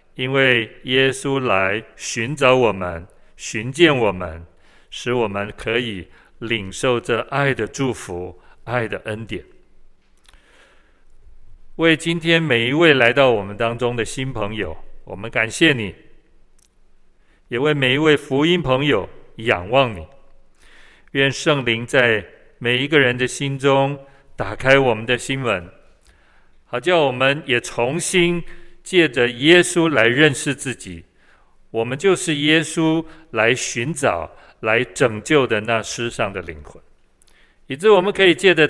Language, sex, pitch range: Chinese, male, 115-150 Hz